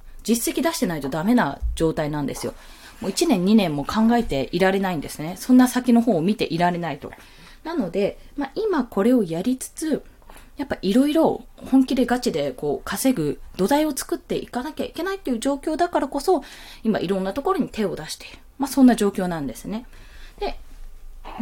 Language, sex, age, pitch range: Japanese, female, 20-39, 185-275 Hz